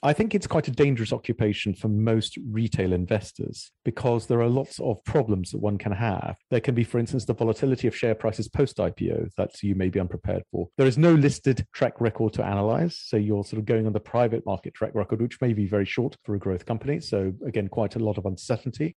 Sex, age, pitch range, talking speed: male, 40-59, 105-130 Hz, 230 wpm